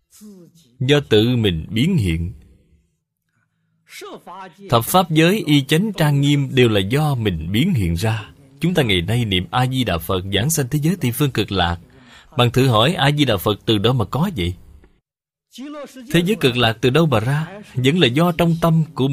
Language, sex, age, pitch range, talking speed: Vietnamese, male, 20-39, 105-165 Hz, 195 wpm